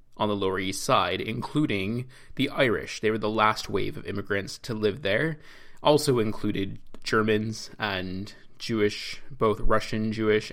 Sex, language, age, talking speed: male, English, 20-39, 150 wpm